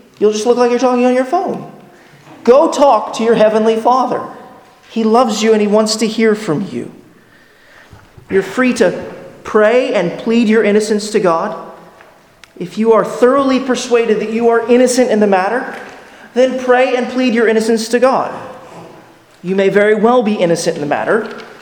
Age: 30-49